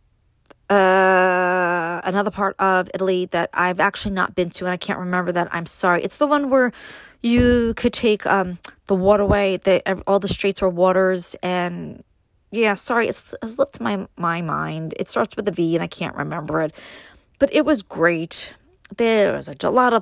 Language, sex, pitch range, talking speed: English, female, 170-210 Hz, 185 wpm